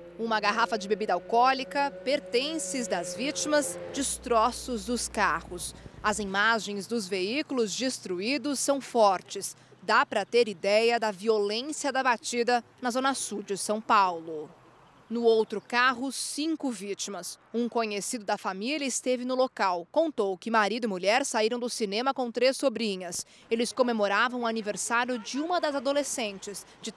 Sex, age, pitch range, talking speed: female, 20-39, 215-275 Hz, 140 wpm